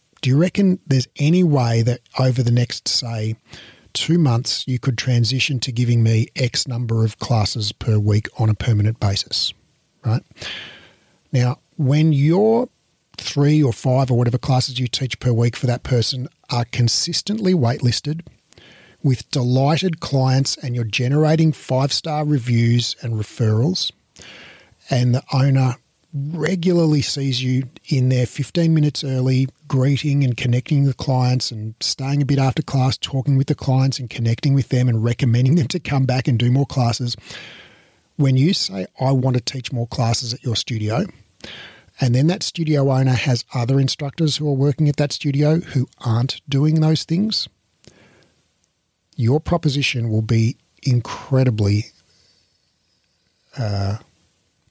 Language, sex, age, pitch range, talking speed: English, male, 40-59, 120-145 Hz, 150 wpm